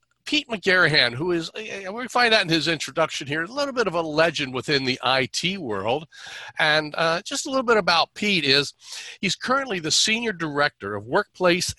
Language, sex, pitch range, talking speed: English, male, 130-180 Hz, 190 wpm